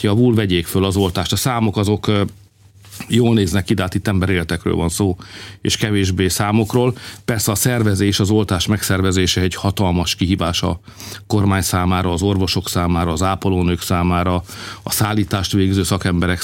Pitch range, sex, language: 90-105 Hz, male, Hungarian